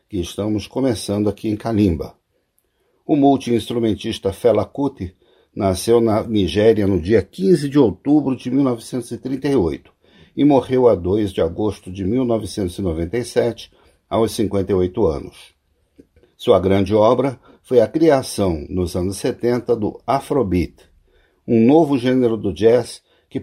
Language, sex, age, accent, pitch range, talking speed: Portuguese, male, 60-79, Brazilian, 95-130 Hz, 125 wpm